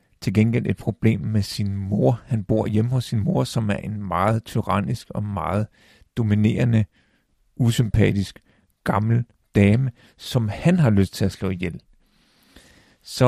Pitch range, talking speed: 100-125 Hz, 150 wpm